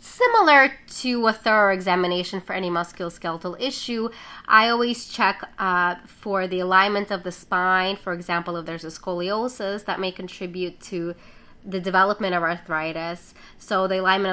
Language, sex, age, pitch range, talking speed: English, female, 20-39, 175-205 Hz, 150 wpm